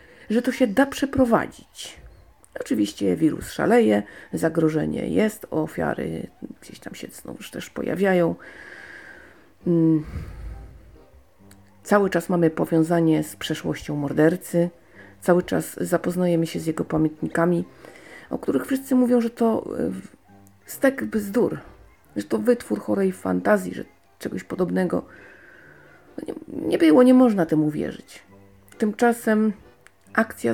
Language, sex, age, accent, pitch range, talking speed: Polish, female, 40-59, native, 160-240 Hz, 110 wpm